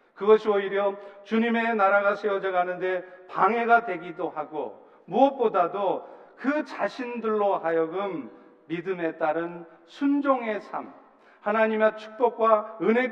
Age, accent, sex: 40-59, native, male